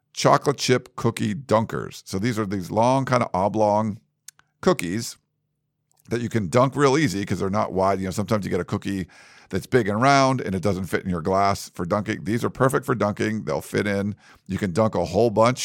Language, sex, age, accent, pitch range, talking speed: English, male, 50-69, American, 90-125 Hz, 220 wpm